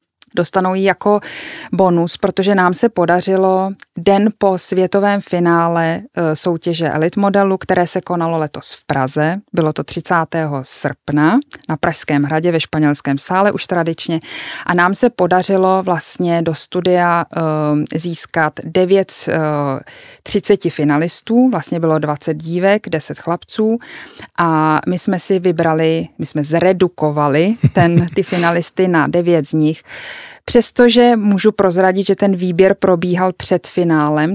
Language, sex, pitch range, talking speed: Czech, female, 160-195 Hz, 130 wpm